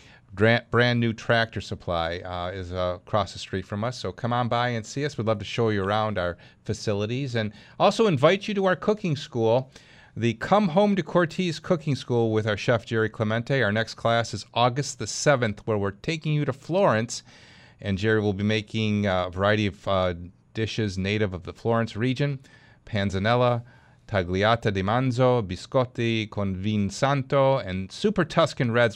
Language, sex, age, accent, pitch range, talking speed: English, male, 40-59, American, 105-135 Hz, 180 wpm